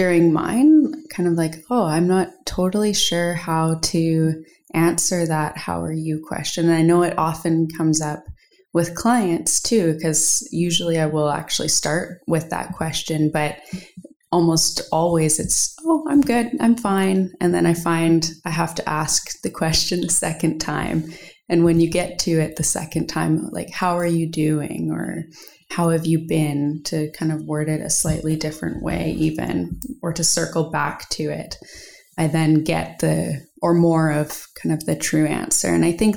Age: 20-39